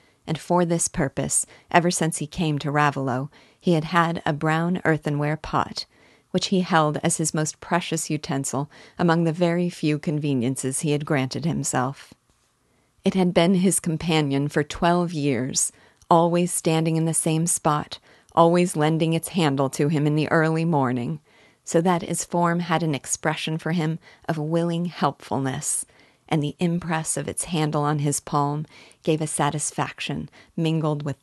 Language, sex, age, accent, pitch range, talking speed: English, female, 40-59, American, 145-165 Hz, 160 wpm